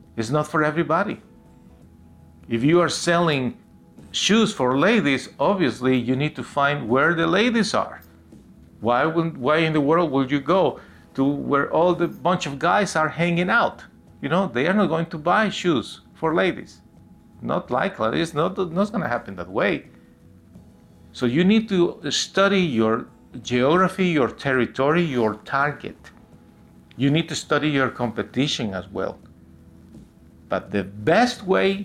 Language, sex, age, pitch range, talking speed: English, male, 50-69, 120-170 Hz, 155 wpm